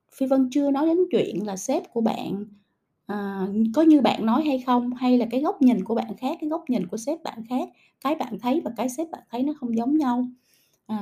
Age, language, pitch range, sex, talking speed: 20-39, Vietnamese, 230-285 Hz, female, 245 wpm